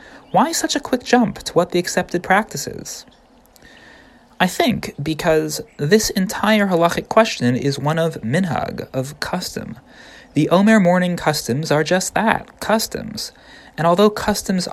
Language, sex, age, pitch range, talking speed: English, male, 30-49, 125-185 Hz, 145 wpm